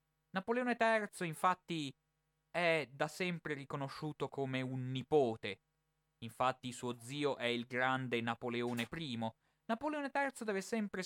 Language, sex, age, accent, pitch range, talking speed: Italian, male, 30-49, native, 130-190 Hz, 120 wpm